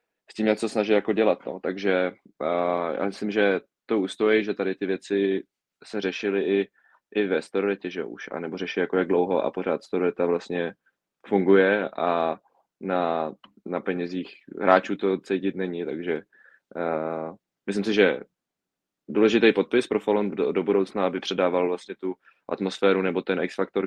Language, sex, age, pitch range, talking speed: Czech, male, 20-39, 85-100 Hz, 165 wpm